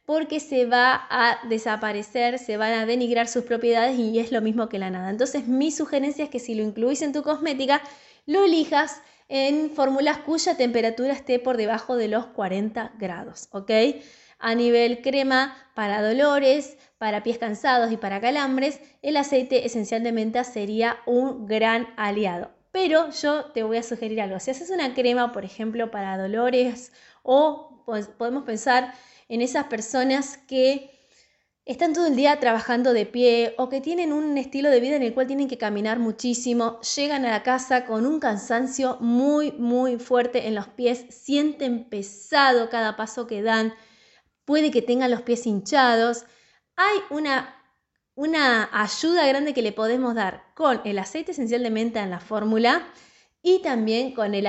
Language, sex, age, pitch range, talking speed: Spanish, female, 20-39, 225-275 Hz, 170 wpm